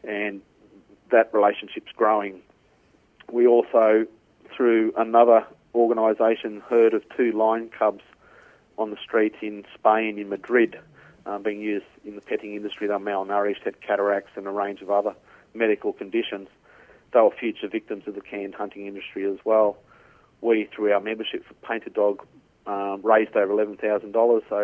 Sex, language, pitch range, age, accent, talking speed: male, English, 100-115 Hz, 40-59, Australian, 150 wpm